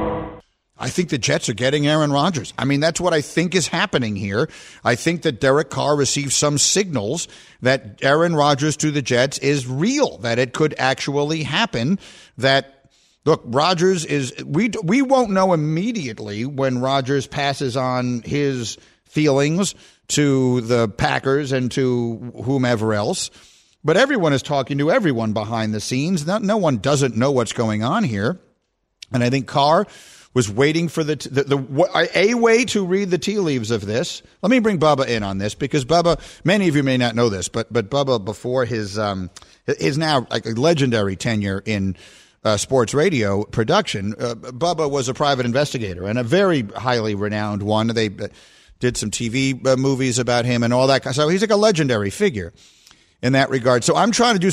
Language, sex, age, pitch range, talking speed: English, male, 50-69, 115-160 Hz, 185 wpm